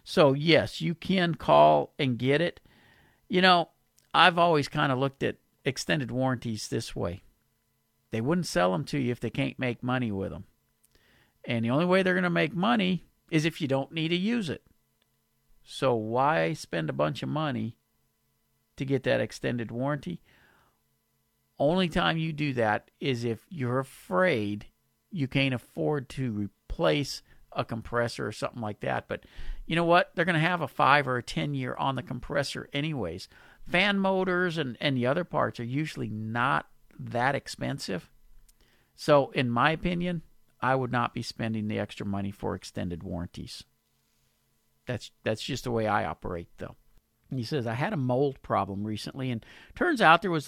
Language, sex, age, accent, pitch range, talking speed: English, male, 50-69, American, 115-160 Hz, 175 wpm